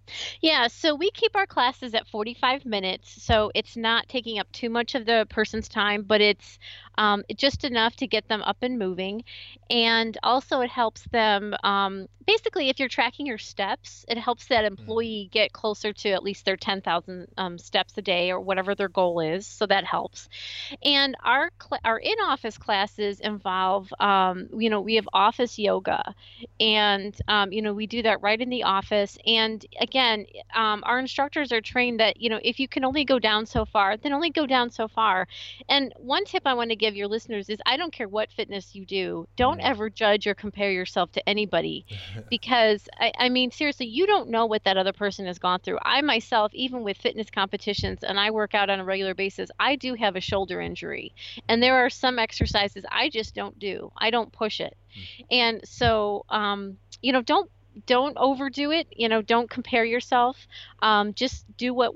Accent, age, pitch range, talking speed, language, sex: American, 30-49, 200-245 Hz, 200 wpm, English, female